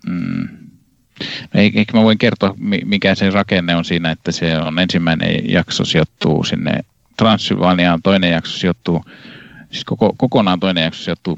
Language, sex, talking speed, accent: Finnish, male, 140 wpm, native